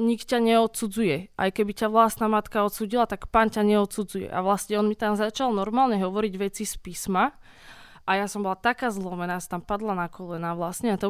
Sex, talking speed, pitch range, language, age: female, 200 wpm, 185-210 Hz, Slovak, 20-39